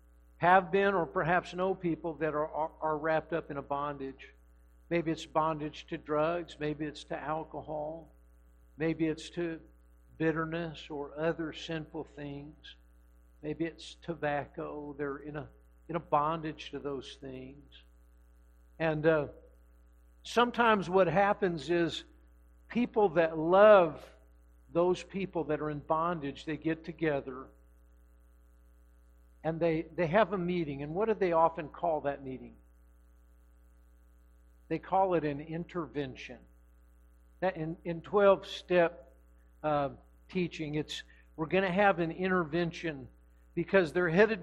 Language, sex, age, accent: English, male, 60-79, American